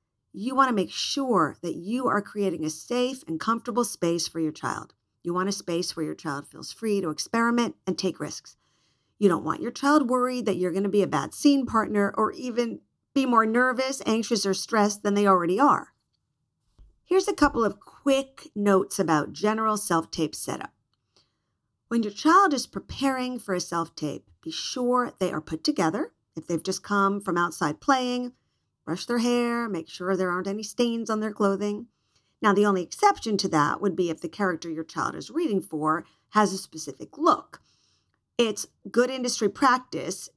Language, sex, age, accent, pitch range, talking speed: English, female, 50-69, American, 180-245 Hz, 185 wpm